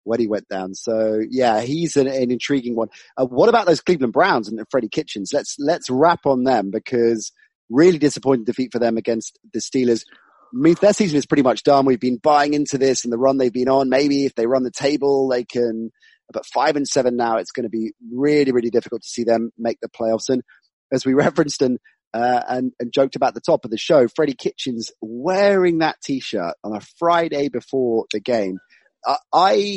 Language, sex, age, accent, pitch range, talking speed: English, male, 30-49, British, 115-145 Hz, 215 wpm